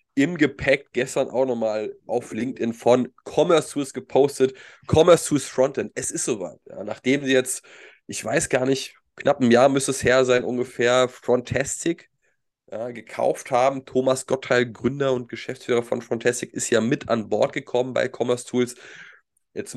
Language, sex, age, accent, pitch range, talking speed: German, male, 20-39, German, 120-135 Hz, 165 wpm